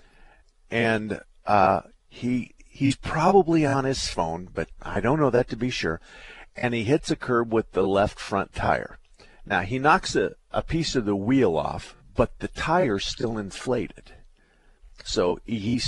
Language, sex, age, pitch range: English, male, 50-69, 105-140 Hz